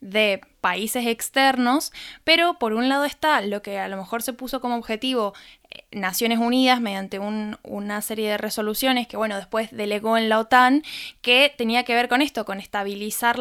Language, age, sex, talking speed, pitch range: Spanish, 10-29, female, 180 wpm, 215-255 Hz